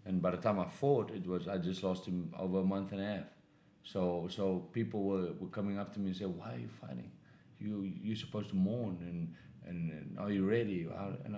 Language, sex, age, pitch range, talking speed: English, male, 30-49, 85-105 Hz, 235 wpm